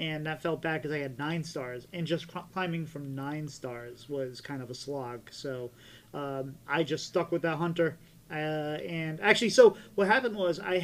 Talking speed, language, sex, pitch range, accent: 200 wpm, English, male, 150-185 Hz, American